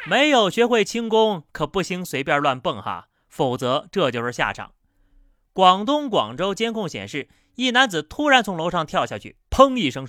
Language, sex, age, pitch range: Chinese, male, 30-49, 140-225 Hz